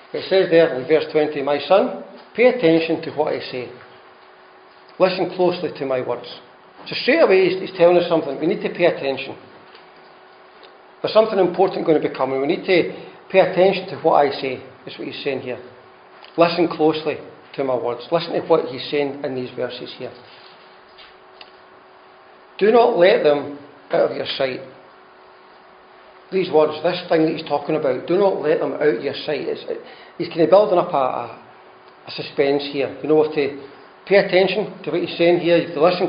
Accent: British